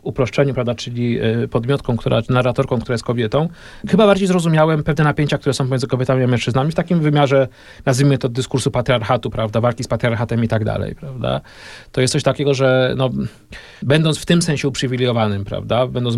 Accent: native